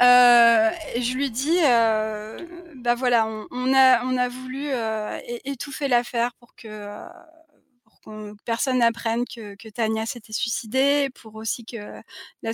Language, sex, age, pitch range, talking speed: French, female, 20-39, 215-245 Hz, 165 wpm